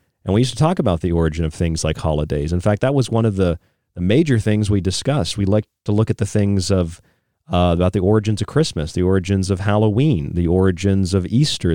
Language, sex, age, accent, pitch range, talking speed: English, male, 40-59, American, 95-125 Hz, 230 wpm